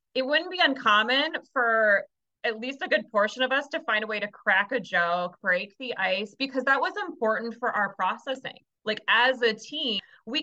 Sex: female